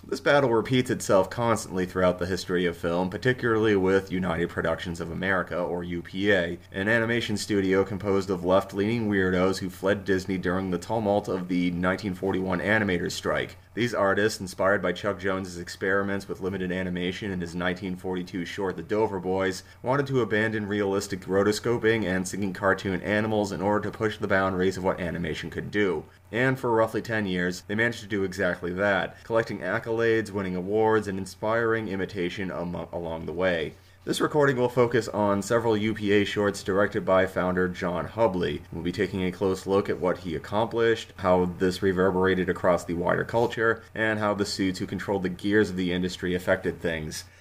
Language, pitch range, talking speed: English, 90-105 Hz, 175 wpm